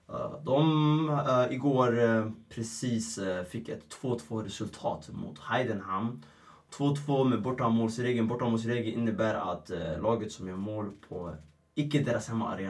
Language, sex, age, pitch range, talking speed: Swedish, male, 20-39, 100-130 Hz, 130 wpm